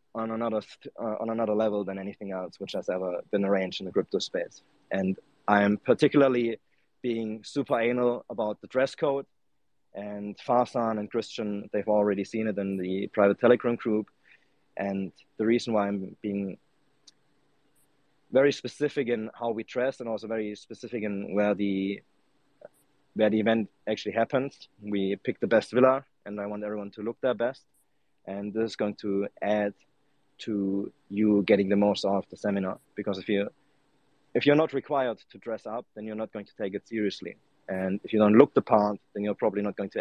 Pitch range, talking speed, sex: 100-120 Hz, 185 wpm, male